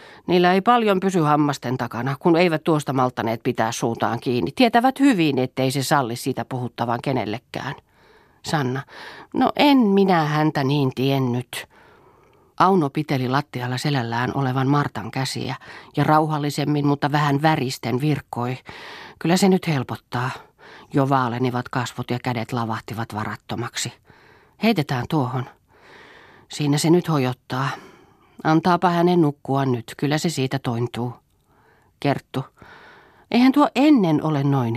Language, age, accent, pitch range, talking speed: Finnish, 40-59, native, 125-155 Hz, 125 wpm